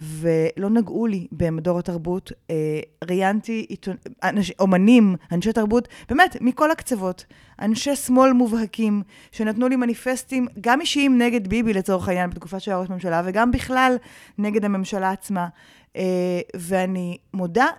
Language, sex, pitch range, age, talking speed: Hebrew, female, 180-230 Hz, 20-39, 125 wpm